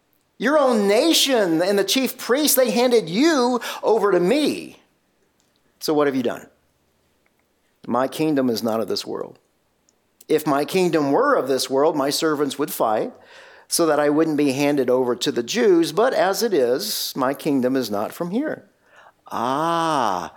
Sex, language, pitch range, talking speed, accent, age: male, English, 140-215 Hz, 170 wpm, American, 50-69